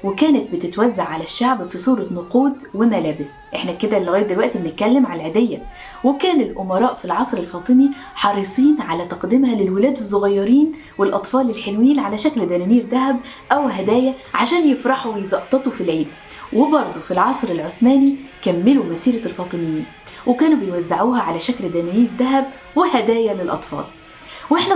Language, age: Arabic, 20-39